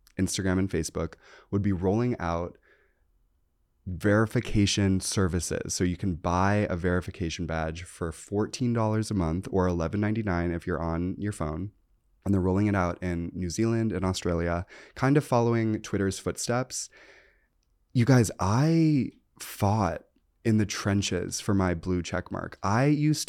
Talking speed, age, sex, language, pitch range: 150 wpm, 20-39, male, English, 90-105 Hz